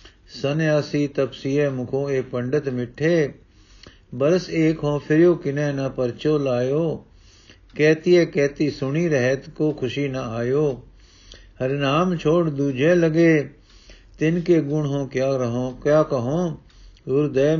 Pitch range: 120-155 Hz